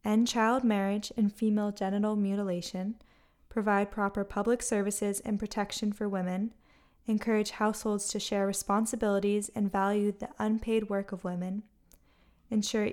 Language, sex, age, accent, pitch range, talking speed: English, female, 10-29, American, 200-225 Hz, 130 wpm